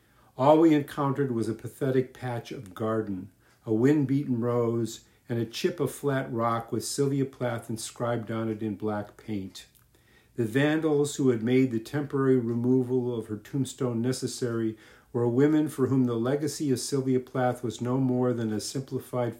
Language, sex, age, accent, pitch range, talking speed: English, male, 50-69, American, 110-135 Hz, 165 wpm